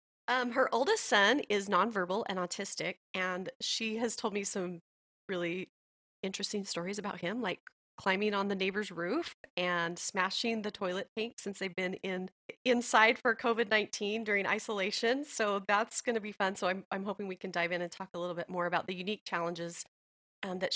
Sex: female